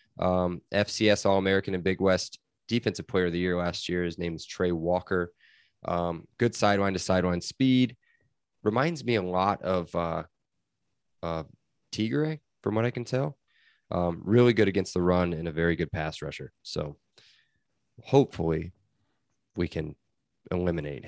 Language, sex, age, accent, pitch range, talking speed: English, male, 20-39, American, 90-110 Hz, 155 wpm